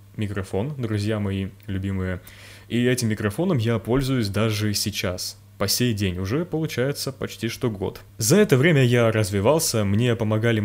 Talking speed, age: 145 wpm, 20-39